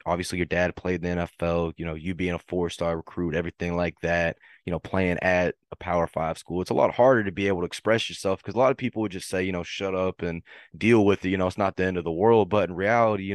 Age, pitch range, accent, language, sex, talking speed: 20-39, 90-110 Hz, American, English, male, 290 wpm